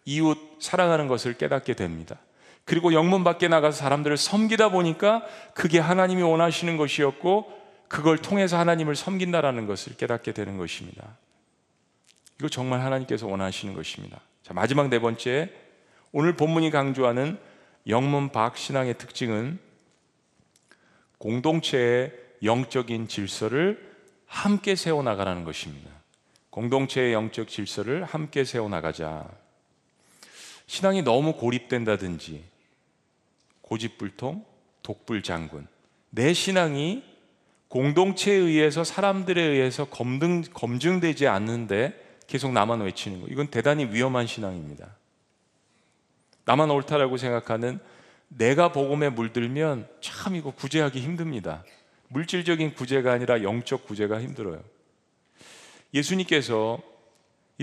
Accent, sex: native, male